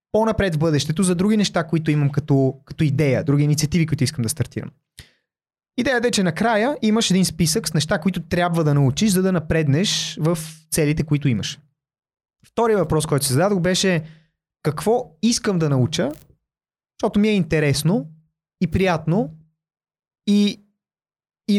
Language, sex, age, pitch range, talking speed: Bulgarian, male, 20-39, 140-180 Hz, 155 wpm